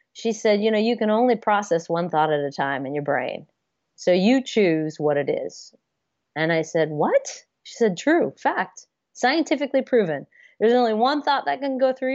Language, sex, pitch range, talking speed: English, female, 170-255 Hz, 200 wpm